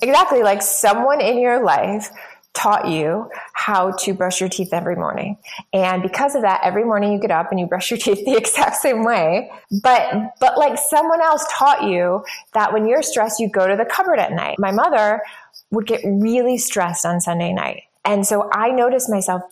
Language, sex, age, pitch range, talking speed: English, female, 20-39, 185-220 Hz, 200 wpm